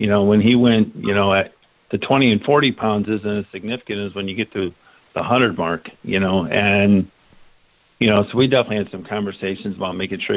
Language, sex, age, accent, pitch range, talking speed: English, male, 50-69, American, 100-115 Hz, 220 wpm